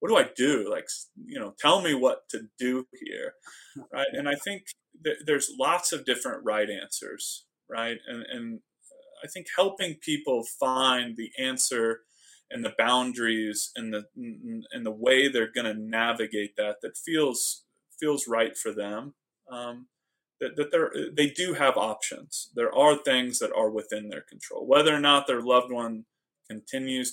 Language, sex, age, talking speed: English, male, 20-39, 165 wpm